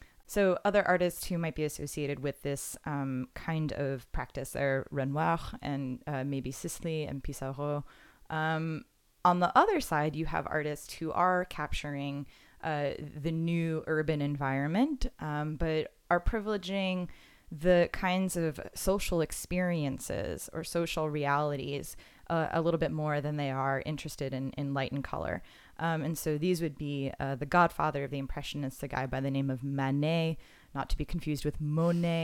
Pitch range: 140-165 Hz